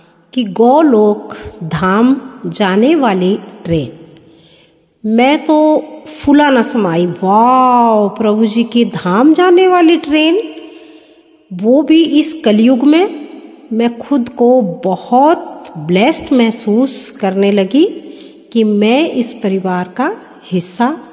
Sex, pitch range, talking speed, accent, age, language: female, 200-285 Hz, 110 wpm, native, 50-69, Hindi